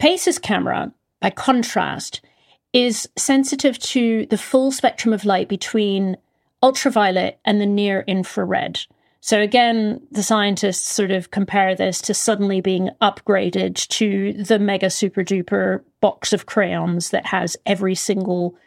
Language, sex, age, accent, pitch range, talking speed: English, female, 40-59, British, 195-225 Hz, 130 wpm